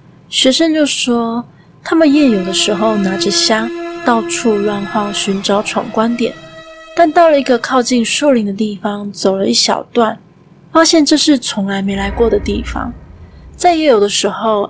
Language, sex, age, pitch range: Chinese, female, 20-39, 195-245 Hz